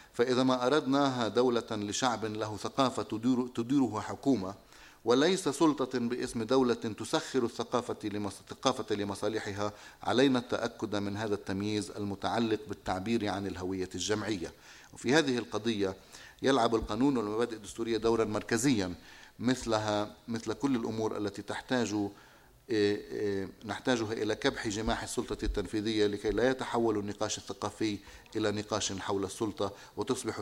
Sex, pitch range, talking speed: male, 105-125 Hz, 115 wpm